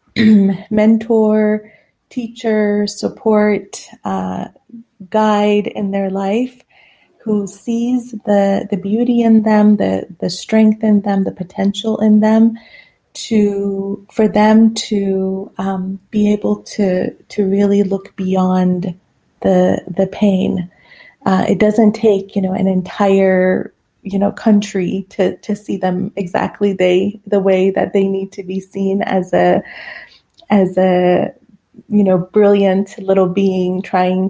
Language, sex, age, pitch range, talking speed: English, female, 30-49, 190-210 Hz, 130 wpm